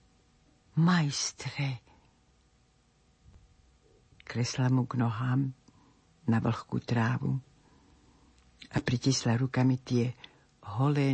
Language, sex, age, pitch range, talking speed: Slovak, female, 60-79, 125-150 Hz, 70 wpm